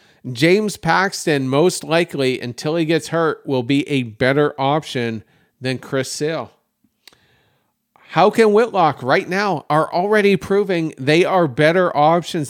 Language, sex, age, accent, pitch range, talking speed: English, male, 40-59, American, 130-170 Hz, 135 wpm